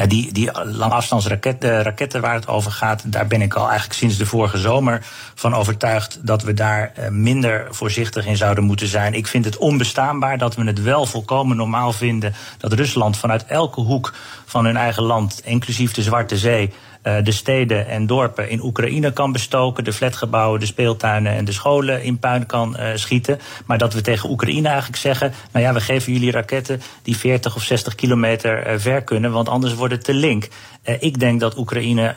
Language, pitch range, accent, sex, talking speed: Dutch, 110-125 Hz, Dutch, male, 190 wpm